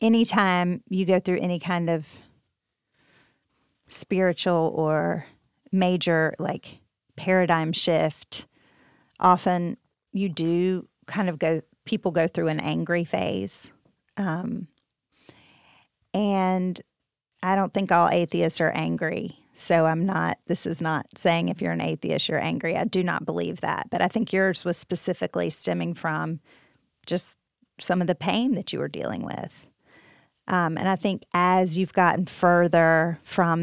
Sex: female